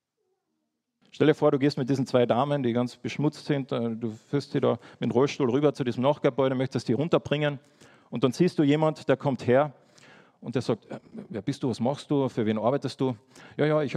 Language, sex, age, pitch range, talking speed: German, male, 40-59, 120-150 Hz, 220 wpm